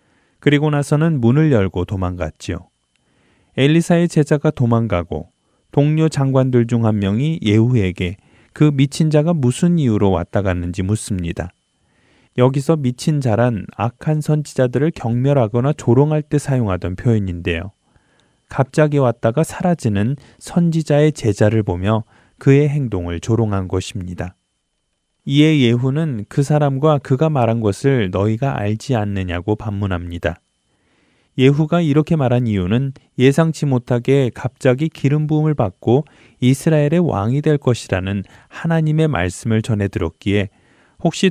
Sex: male